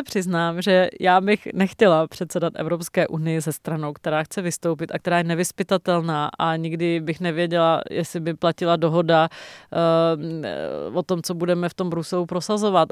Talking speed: 160 wpm